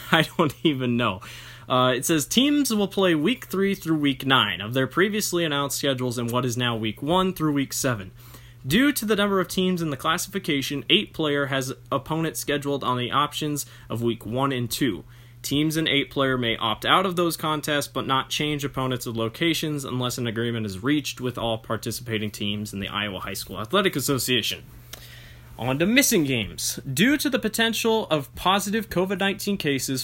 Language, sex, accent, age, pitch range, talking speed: English, male, American, 20-39, 120-160 Hz, 190 wpm